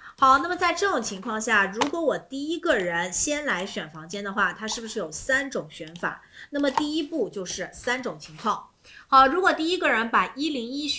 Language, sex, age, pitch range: Chinese, female, 30-49, 190-270 Hz